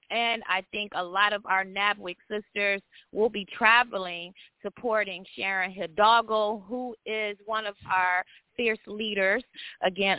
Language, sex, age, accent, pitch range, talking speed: English, female, 20-39, American, 195-240 Hz, 135 wpm